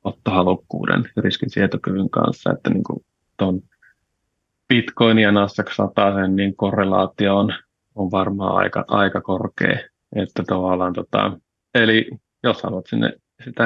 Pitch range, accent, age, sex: 95-105 Hz, native, 30-49, male